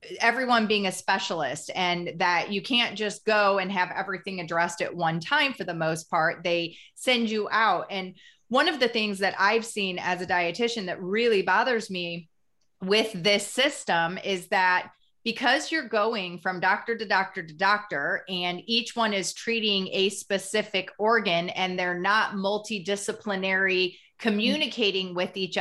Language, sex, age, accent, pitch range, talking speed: English, female, 30-49, American, 180-225 Hz, 160 wpm